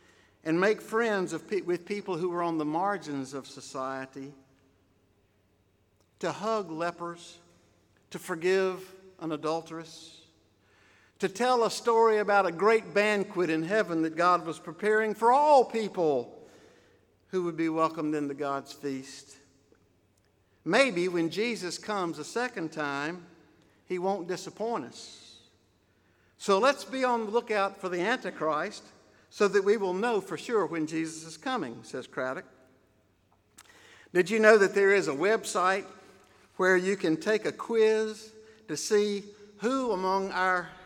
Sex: male